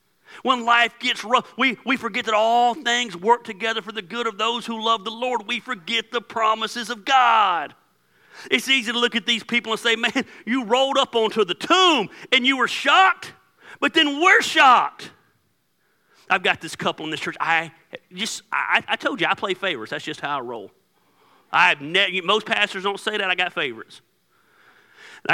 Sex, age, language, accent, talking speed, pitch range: male, 40-59, English, American, 195 wpm, 155-240 Hz